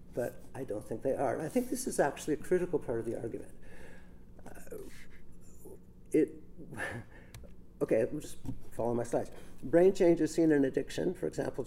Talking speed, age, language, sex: 170 wpm, 50-69, English, male